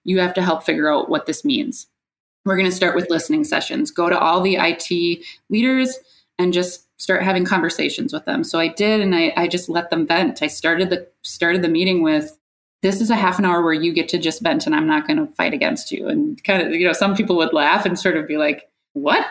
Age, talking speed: 20-39, 250 wpm